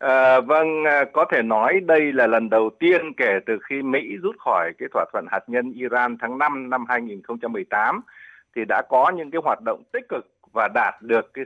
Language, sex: Vietnamese, male